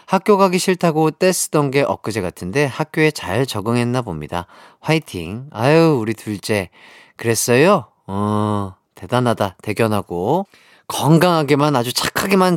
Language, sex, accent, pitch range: Korean, male, native, 110-185 Hz